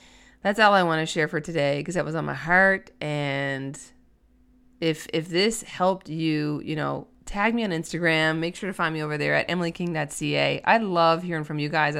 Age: 20-39